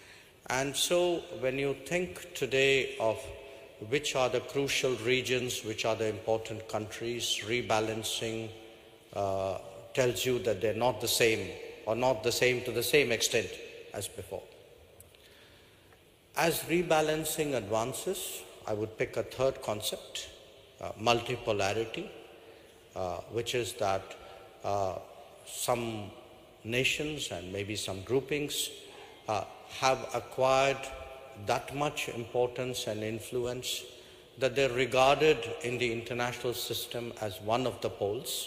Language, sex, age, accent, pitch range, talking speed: English, male, 50-69, Indian, 110-135 Hz, 120 wpm